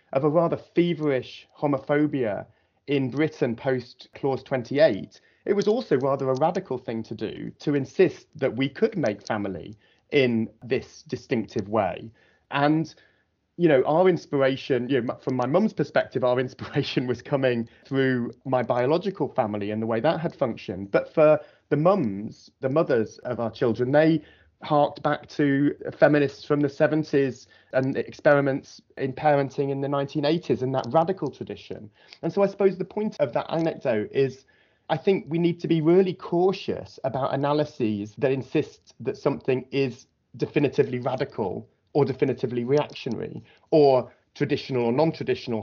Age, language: 30-49, English